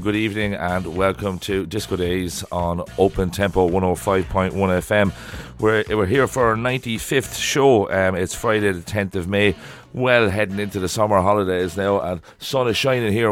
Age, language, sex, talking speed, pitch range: 30-49, English, male, 170 wpm, 95-110 Hz